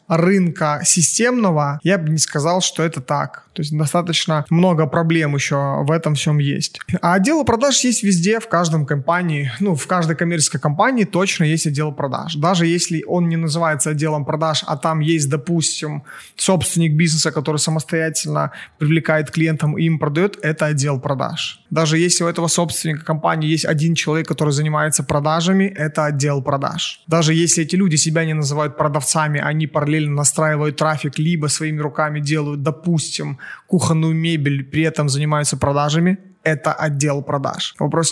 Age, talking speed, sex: 20-39, 160 wpm, male